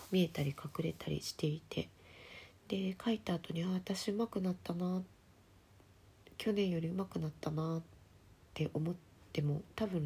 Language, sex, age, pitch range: Japanese, female, 40-59, 145-175 Hz